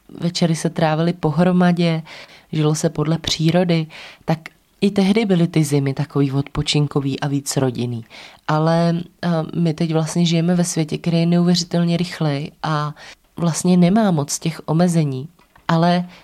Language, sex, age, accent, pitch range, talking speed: Czech, female, 20-39, native, 160-180 Hz, 135 wpm